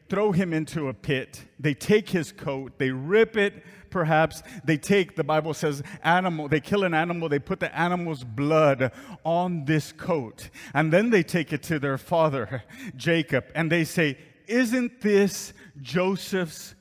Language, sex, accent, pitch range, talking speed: English, male, American, 150-195 Hz, 165 wpm